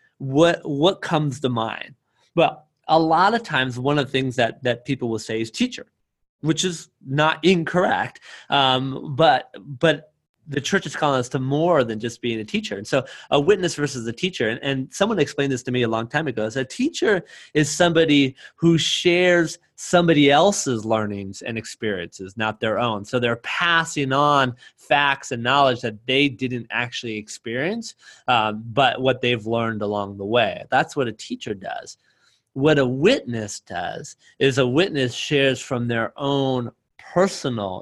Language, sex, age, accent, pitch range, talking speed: English, male, 30-49, American, 120-155 Hz, 175 wpm